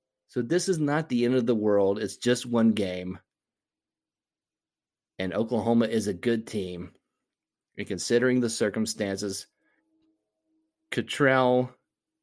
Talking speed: 120 wpm